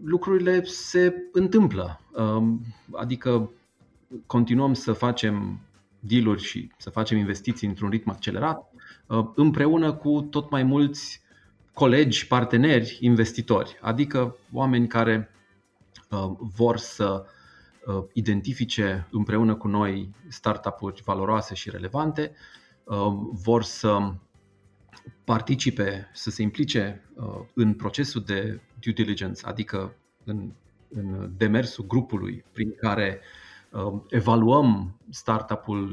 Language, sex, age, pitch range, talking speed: Romanian, male, 30-49, 105-125 Hz, 95 wpm